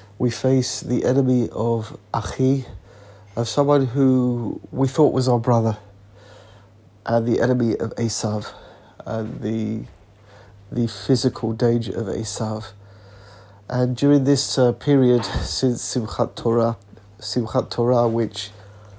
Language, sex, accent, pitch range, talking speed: English, male, British, 105-125 Hz, 115 wpm